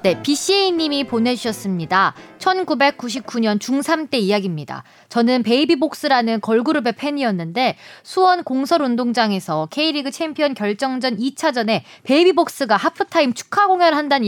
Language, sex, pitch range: Korean, female, 215-315 Hz